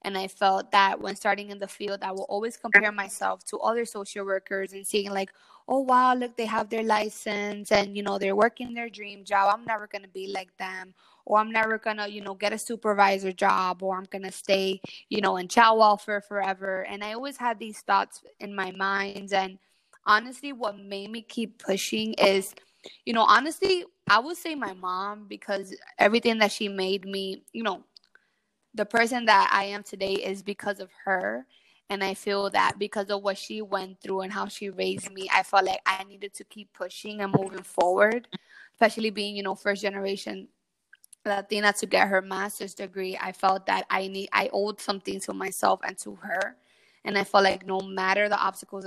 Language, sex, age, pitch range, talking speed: English, female, 20-39, 195-215 Hz, 205 wpm